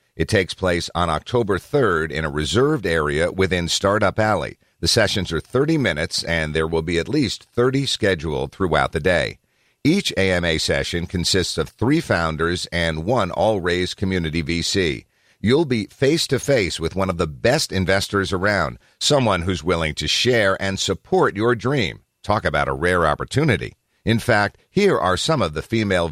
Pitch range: 85-120 Hz